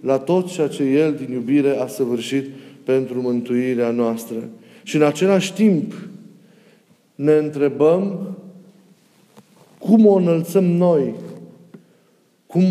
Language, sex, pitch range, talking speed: Romanian, male, 135-170 Hz, 110 wpm